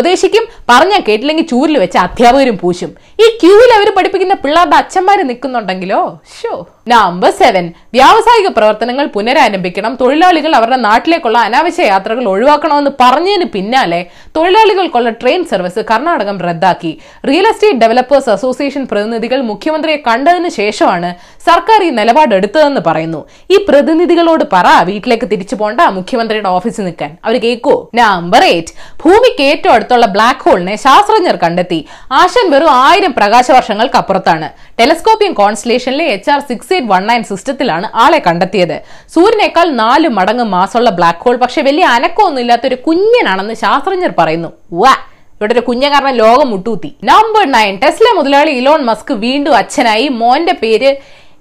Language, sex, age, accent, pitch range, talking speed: Malayalam, female, 20-39, native, 215-335 Hz, 120 wpm